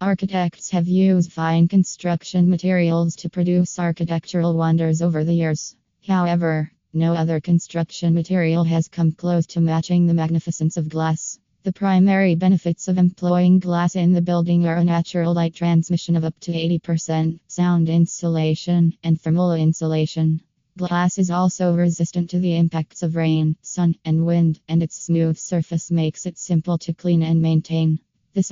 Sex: female